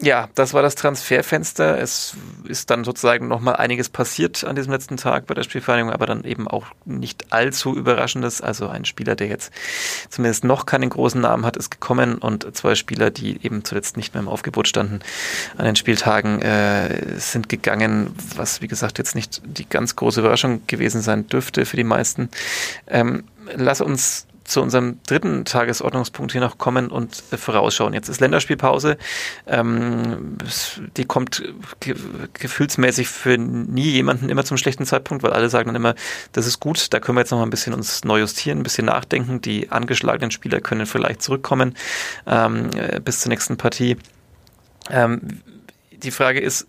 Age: 30-49